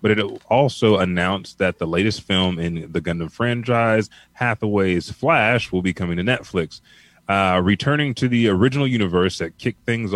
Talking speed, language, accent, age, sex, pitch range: 165 wpm, English, American, 30-49, male, 90-115 Hz